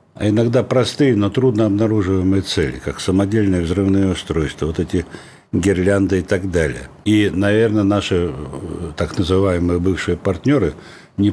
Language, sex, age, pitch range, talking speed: Russian, male, 60-79, 85-110 Hz, 130 wpm